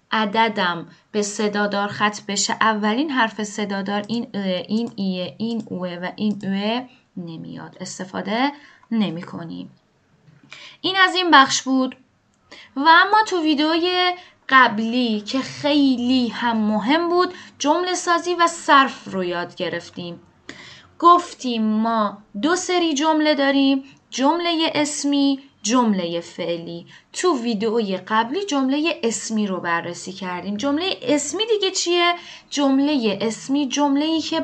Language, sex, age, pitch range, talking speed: Persian, female, 10-29, 205-295 Hz, 120 wpm